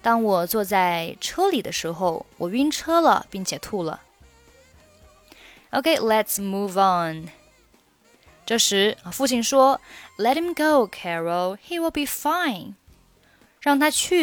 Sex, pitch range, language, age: female, 185-270 Hz, Chinese, 20-39